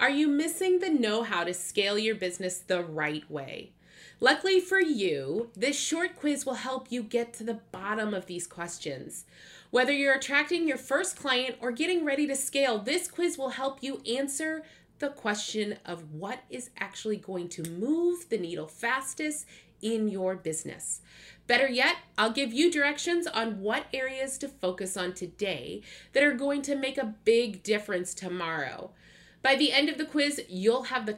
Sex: female